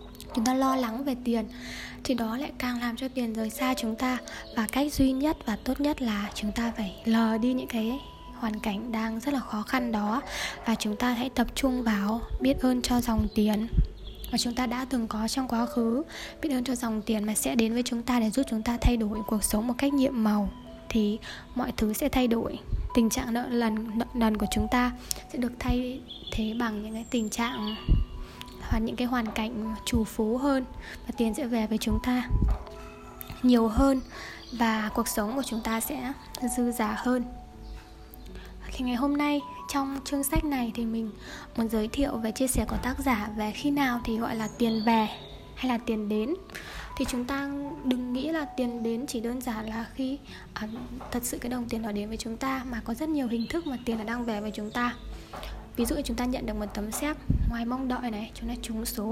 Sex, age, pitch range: female, 10-29, 225-260 Hz